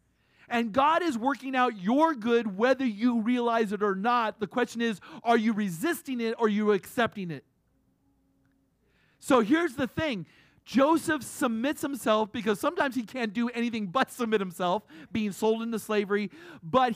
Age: 40-59